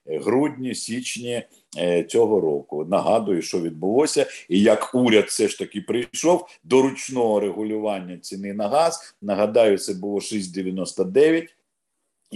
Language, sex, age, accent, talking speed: Ukrainian, male, 50-69, native, 115 wpm